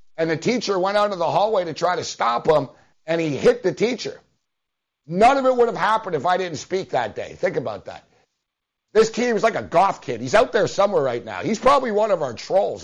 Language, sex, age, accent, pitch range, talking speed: English, male, 60-79, American, 215-280 Hz, 245 wpm